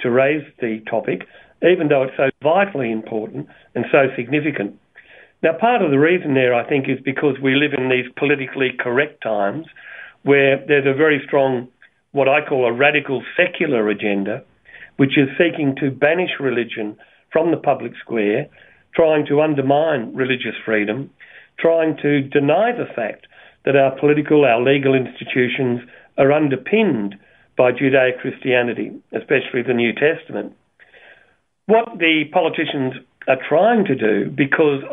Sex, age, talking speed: male, 50-69, 145 wpm